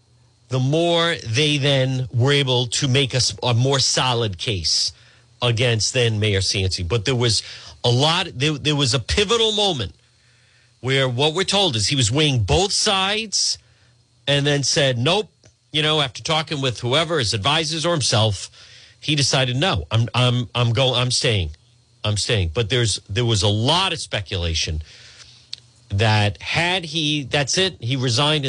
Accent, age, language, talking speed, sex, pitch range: American, 40-59, English, 165 wpm, male, 115-150 Hz